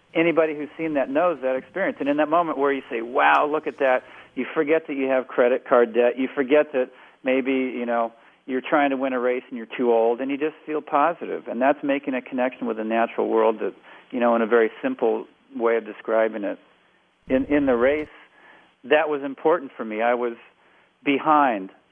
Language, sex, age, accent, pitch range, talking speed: English, male, 40-59, American, 120-145 Hz, 215 wpm